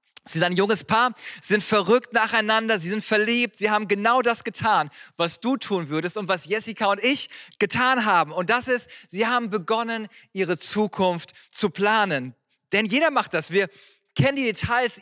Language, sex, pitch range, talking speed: German, male, 195-240 Hz, 180 wpm